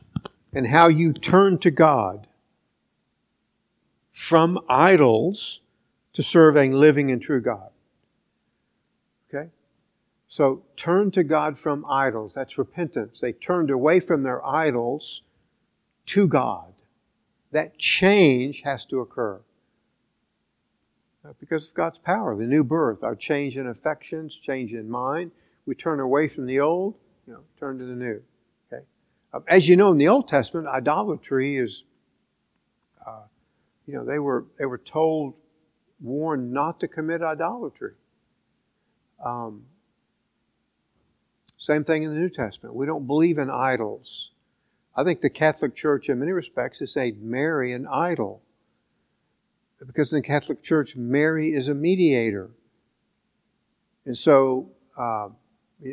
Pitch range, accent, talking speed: 130-160 Hz, American, 130 wpm